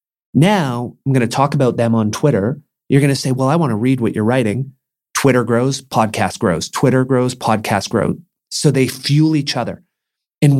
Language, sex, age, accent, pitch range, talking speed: English, male, 30-49, American, 115-135 Hz, 200 wpm